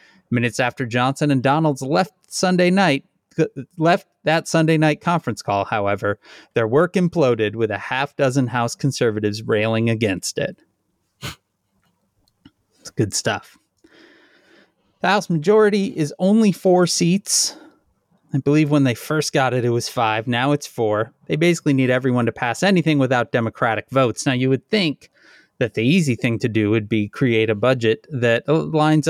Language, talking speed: English, 160 wpm